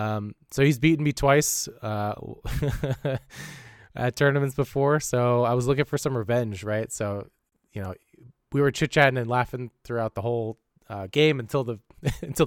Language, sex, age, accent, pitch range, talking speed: English, male, 20-39, American, 105-130 Hz, 165 wpm